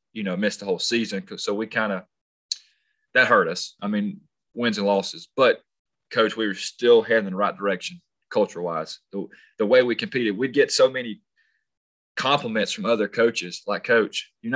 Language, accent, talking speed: English, American, 190 wpm